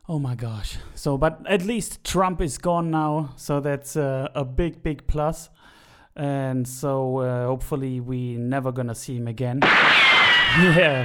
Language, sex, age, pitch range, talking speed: English, male, 30-49, 135-175 Hz, 165 wpm